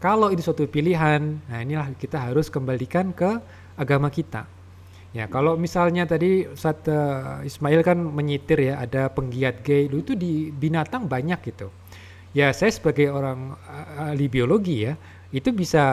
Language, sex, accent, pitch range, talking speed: Indonesian, male, native, 125-170 Hz, 145 wpm